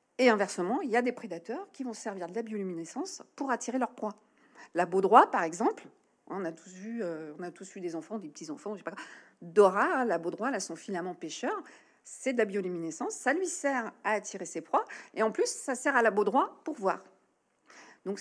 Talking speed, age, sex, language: 210 wpm, 50-69, female, French